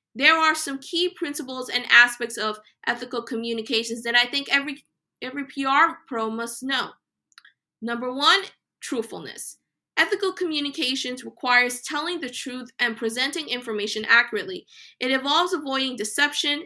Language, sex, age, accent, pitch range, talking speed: English, female, 20-39, American, 225-290 Hz, 130 wpm